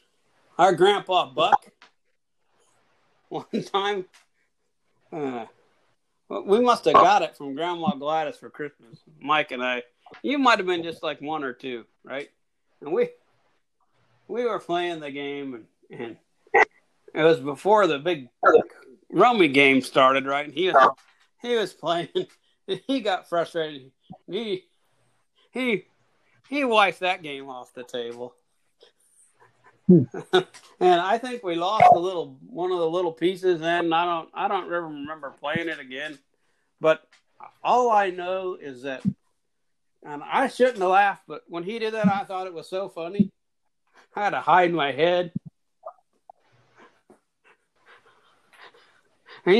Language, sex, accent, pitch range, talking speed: English, male, American, 150-220 Hz, 140 wpm